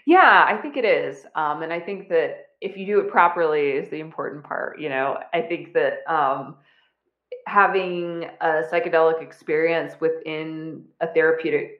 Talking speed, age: 165 wpm, 20-39